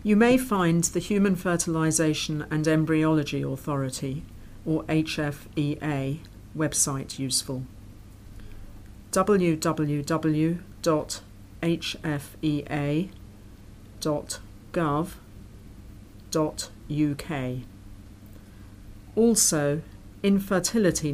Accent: British